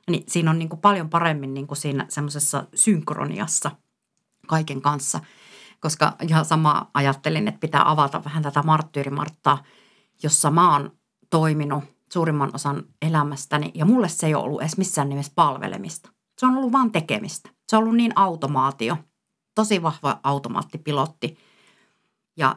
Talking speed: 145 wpm